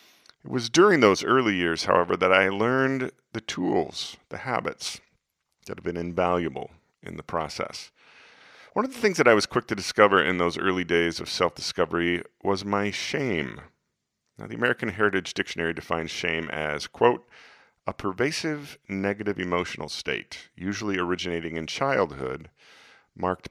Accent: American